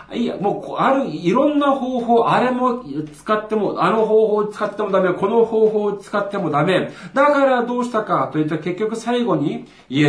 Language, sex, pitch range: Japanese, male, 110-165 Hz